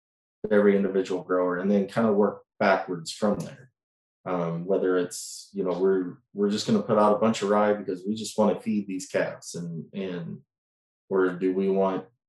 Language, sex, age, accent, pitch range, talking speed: English, male, 20-39, American, 90-105 Hz, 200 wpm